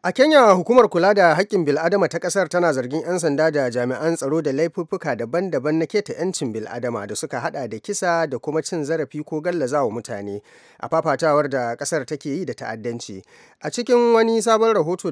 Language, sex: English, male